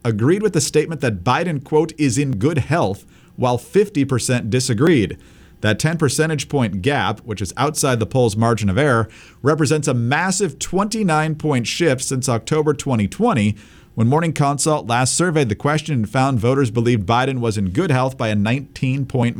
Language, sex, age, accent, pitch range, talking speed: English, male, 40-59, American, 110-145 Hz, 165 wpm